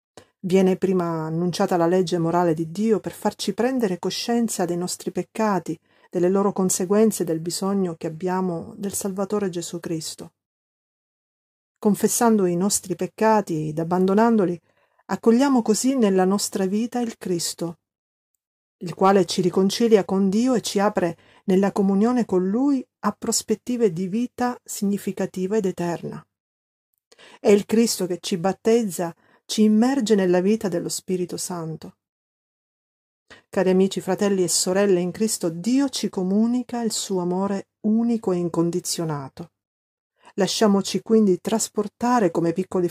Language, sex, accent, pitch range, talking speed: Italian, female, native, 175-220 Hz, 130 wpm